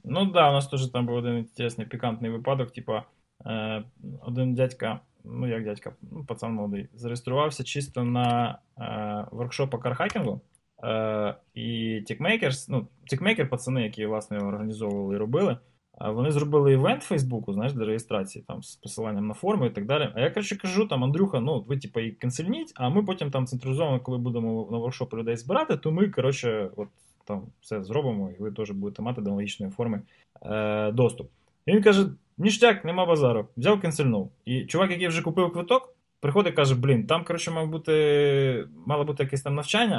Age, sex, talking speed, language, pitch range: 20-39, male, 185 wpm, Ukrainian, 115-165 Hz